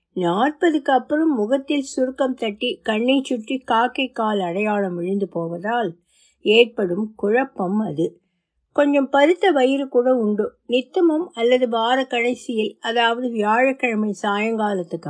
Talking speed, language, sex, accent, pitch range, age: 105 wpm, Tamil, female, native, 210-275 Hz, 50-69